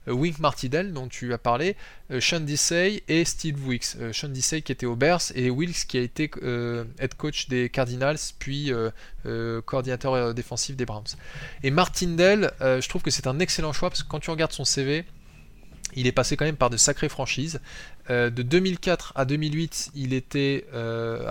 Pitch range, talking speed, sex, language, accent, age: 125-155 Hz, 200 wpm, male, French, French, 20-39